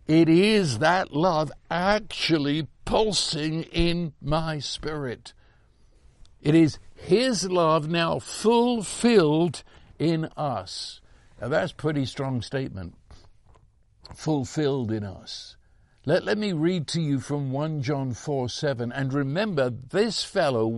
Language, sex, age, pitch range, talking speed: English, male, 60-79, 120-160 Hz, 120 wpm